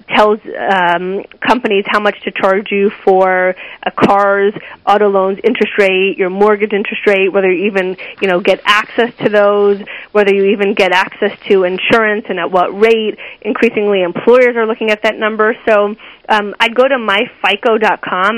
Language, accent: English, American